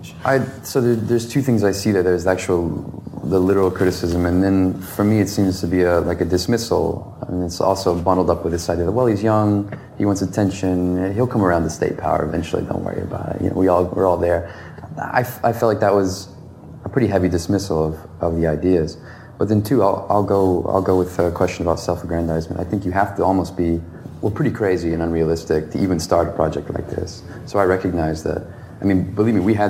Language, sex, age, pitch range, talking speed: English, male, 30-49, 85-100 Hz, 235 wpm